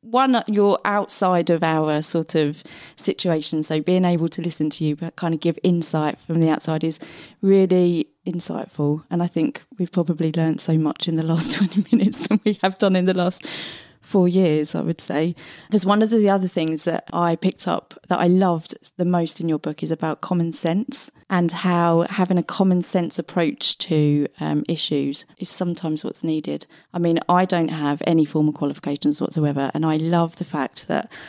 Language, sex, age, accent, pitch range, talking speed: English, female, 30-49, British, 160-205 Hz, 195 wpm